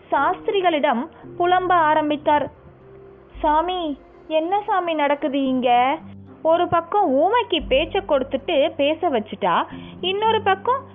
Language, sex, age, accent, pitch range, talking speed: Tamil, female, 20-39, native, 220-340 Hz, 90 wpm